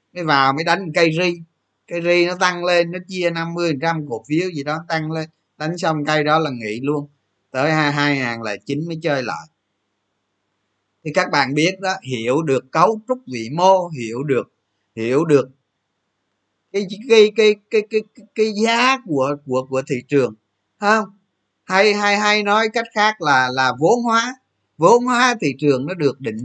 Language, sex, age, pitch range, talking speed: Vietnamese, male, 20-39, 130-210 Hz, 185 wpm